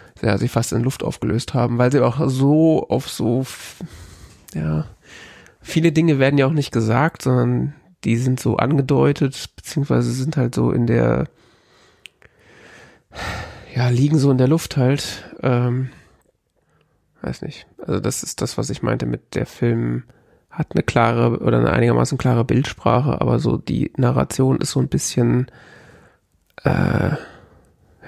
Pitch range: 120-145 Hz